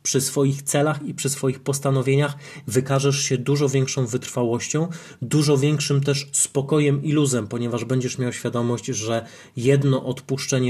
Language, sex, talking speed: Polish, male, 140 wpm